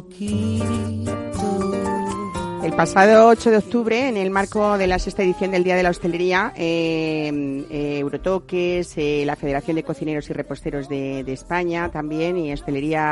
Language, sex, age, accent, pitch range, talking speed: Spanish, female, 40-59, Spanish, 145-175 Hz, 150 wpm